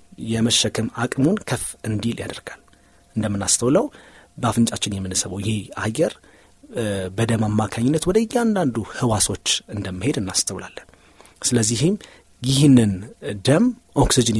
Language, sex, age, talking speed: Amharic, male, 30-49, 80 wpm